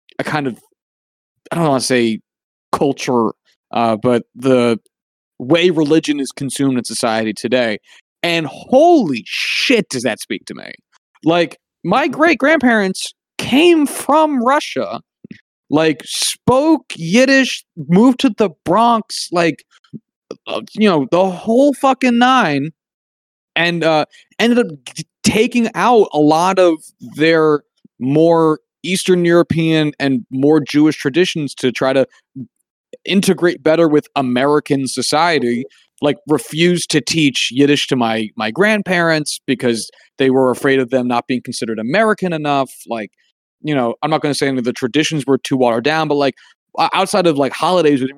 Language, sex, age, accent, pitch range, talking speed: English, male, 30-49, American, 130-180 Hz, 140 wpm